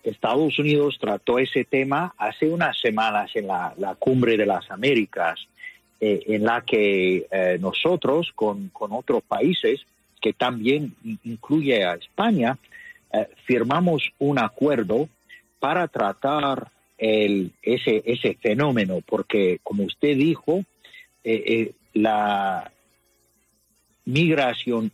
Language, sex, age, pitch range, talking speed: English, male, 50-69, 105-150 Hz, 115 wpm